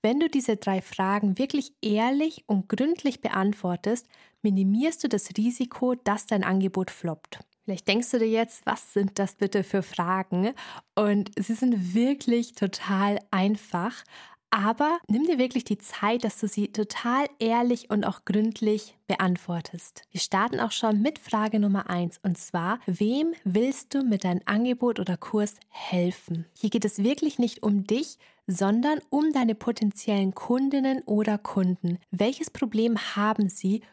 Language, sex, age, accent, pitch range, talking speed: German, female, 20-39, German, 190-240 Hz, 155 wpm